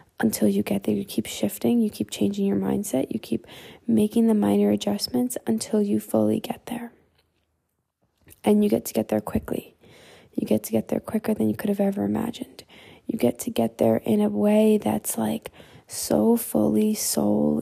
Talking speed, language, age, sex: 185 wpm, English, 10-29, female